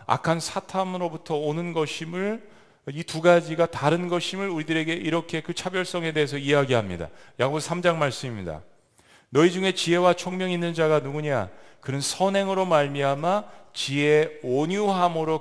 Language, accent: Korean, native